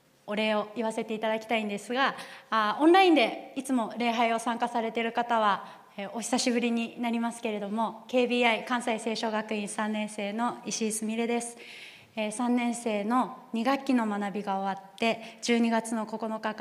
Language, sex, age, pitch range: Japanese, female, 20-39, 200-235 Hz